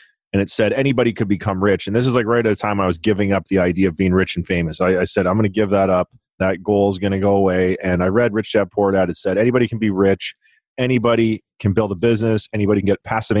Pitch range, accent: 95-110 Hz, American